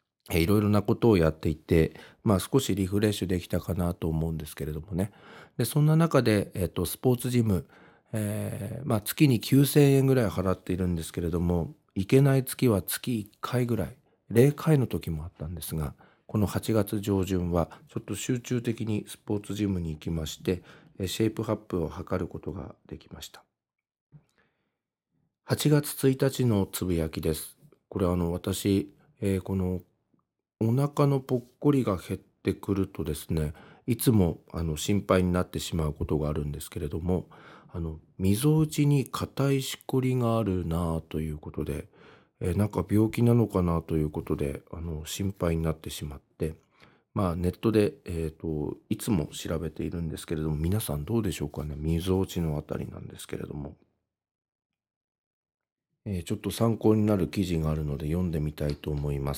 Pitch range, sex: 80-115 Hz, male